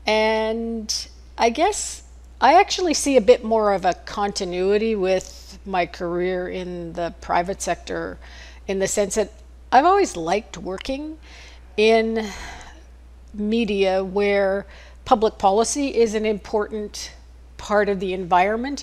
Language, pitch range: English, 185-235 Hz